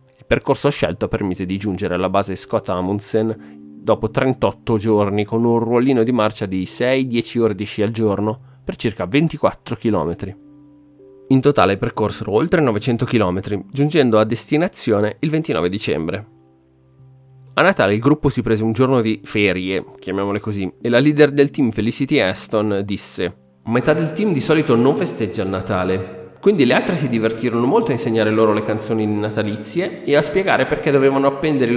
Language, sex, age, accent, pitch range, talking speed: Italian, male, 30-49, native, 105-140 Hz, 170 wpm